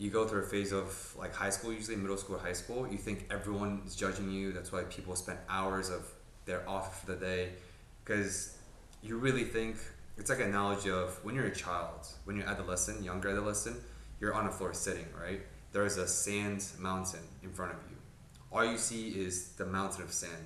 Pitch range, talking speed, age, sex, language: 90-105 Hz, 215 wpm, 20-39, male, English